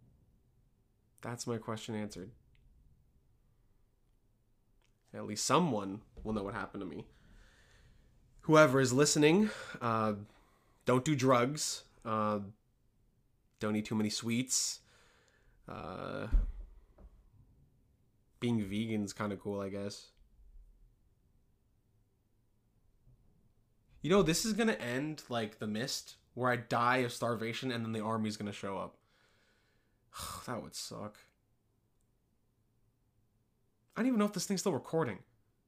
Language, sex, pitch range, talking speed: English, male, 105-125 Hz, 120 wpm